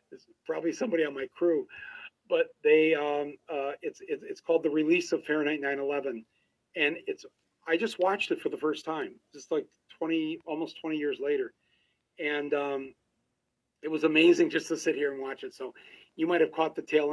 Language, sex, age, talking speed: English, male, 40-59, 190 wpm